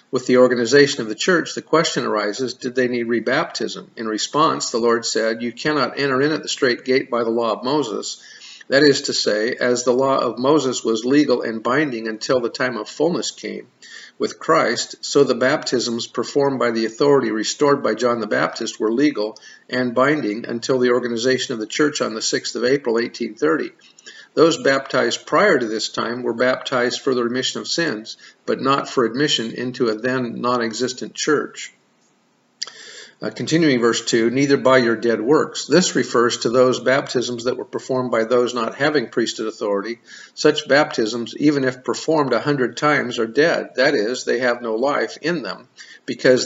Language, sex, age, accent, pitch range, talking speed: English, male, 50-69, American, 115-135 Hz, 185 wpm